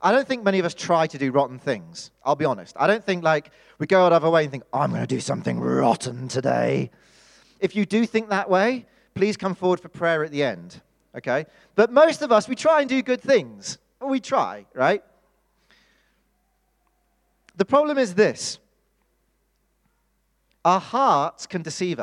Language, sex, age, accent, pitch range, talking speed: English, male, 30-49, British, 150-215 Hz, 190 wpm